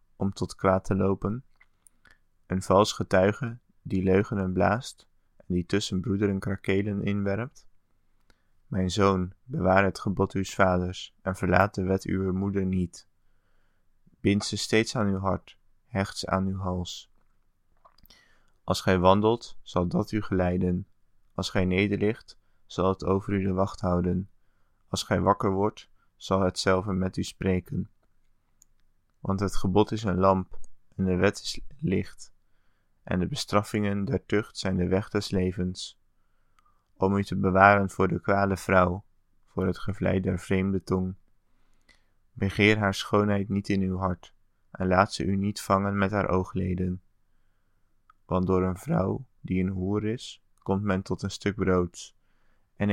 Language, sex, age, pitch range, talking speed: English, male, 20-39, 95-100 Hz, 155 wpm